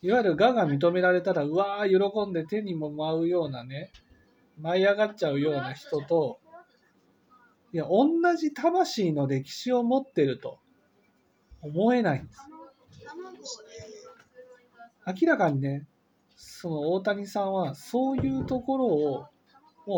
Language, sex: Japanese, male